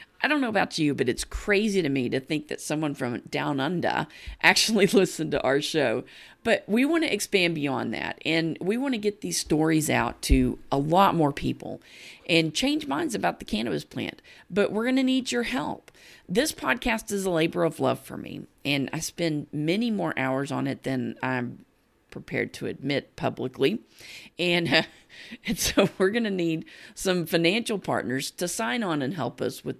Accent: American